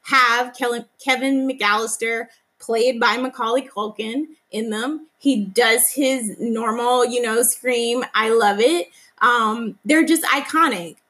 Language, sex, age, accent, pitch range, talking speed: English, female, 20-39, American, 215-265 Hz, 125 wpm